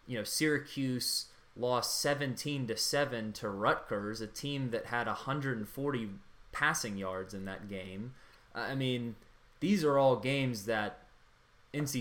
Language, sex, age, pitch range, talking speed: English, male, 20-39, 110-140 Hz, 130 wpm